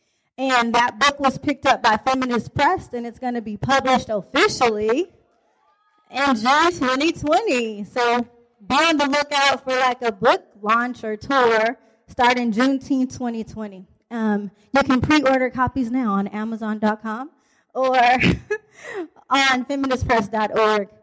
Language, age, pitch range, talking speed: English, 20-39, 215-265 Hz, 130 wpm